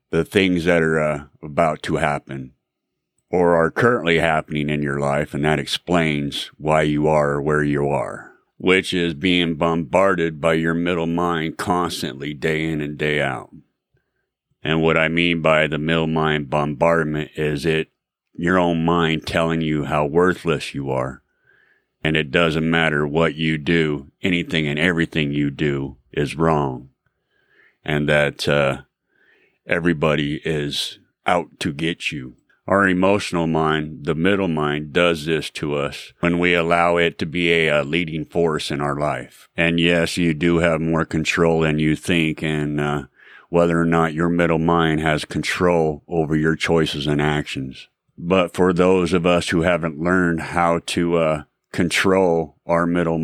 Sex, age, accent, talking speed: male, 30-49, American, 160 wpm